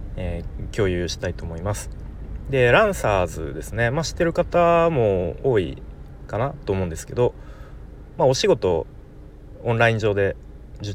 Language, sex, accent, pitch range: Japanese, male, native, 85-120 Hz